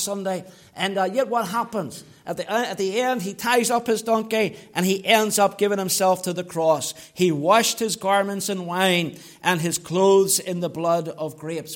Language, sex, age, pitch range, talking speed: English, male, 60-79, 180-235 Hz, 200 wpm